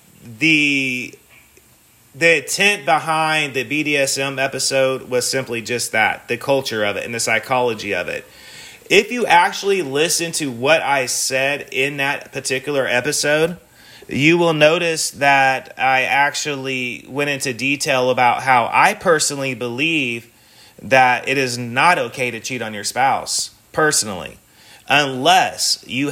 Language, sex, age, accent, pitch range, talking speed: English, male, 30-49, American, 120-140 Hz, 135 wpm